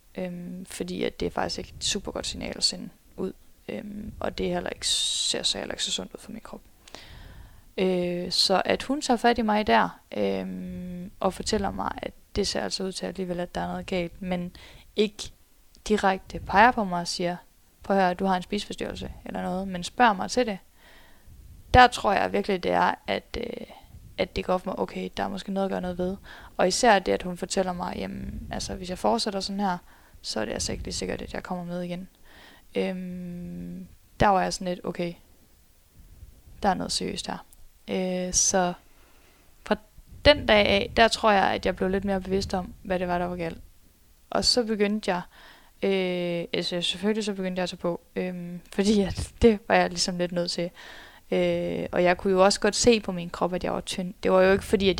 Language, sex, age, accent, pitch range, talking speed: Danish, female, 20-39, native, 175-200 Hz, 220 wpm